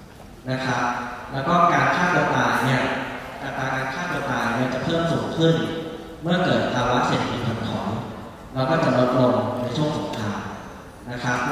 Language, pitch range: Thai, 120-150 Hz